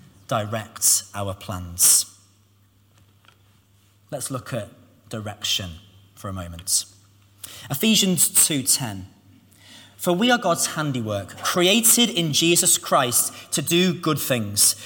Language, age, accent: English, 30-49, British